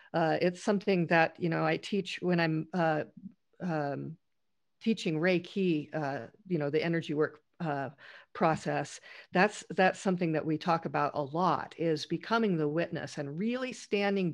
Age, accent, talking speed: 50-69, American, 165 wpm